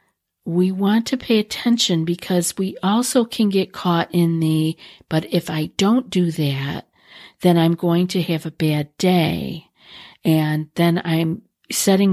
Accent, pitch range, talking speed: American, 160-185 Hz, 155 wpm